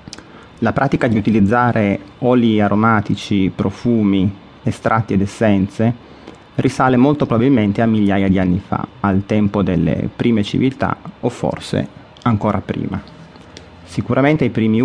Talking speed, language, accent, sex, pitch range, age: 120 wpm, Italian, native, male, 100-120 Hz, 30-49